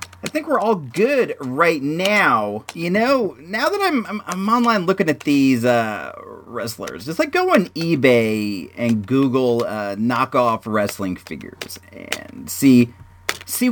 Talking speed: 150 wpm